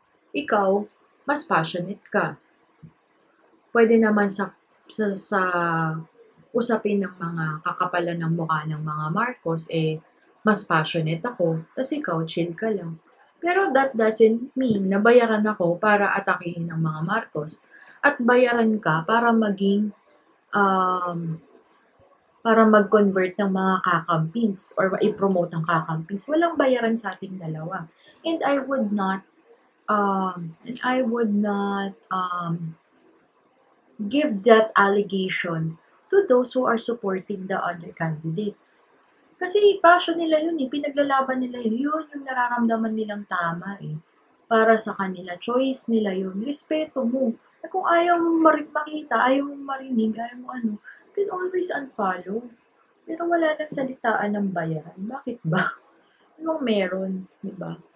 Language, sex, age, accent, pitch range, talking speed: Filipino, female, 20-39, native, 180-260 Hz, 135 wpm